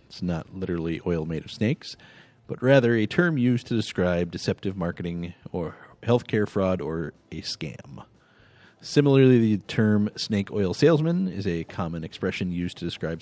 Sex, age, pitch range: male, 30-49, 90-115 Hz